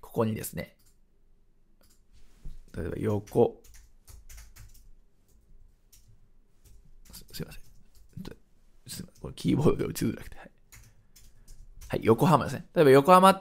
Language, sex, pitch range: Japanese, male, 115-195 Hz